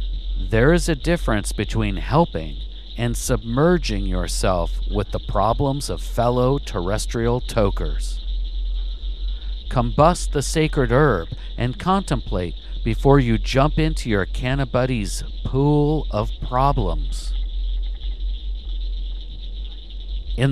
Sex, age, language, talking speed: male, 50-69, English, 95 wpm